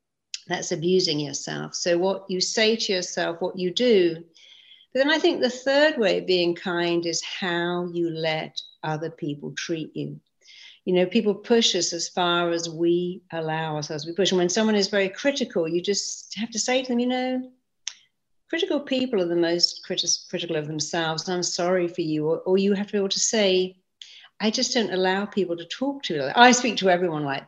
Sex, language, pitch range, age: female, English, 175-210 Hz, 60-79